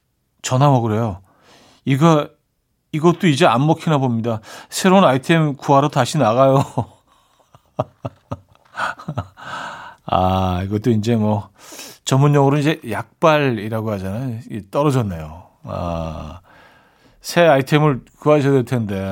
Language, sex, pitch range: Korean, male, 110-150 Hz